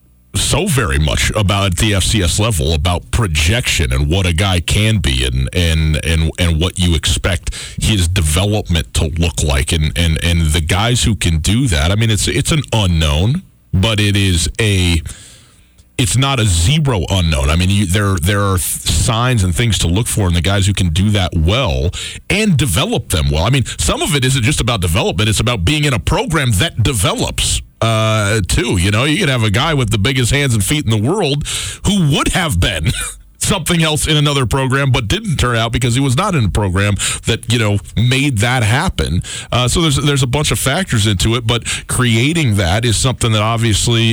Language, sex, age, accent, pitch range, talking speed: English, male, 40-59, American, 90-125 Hz, 210 wpm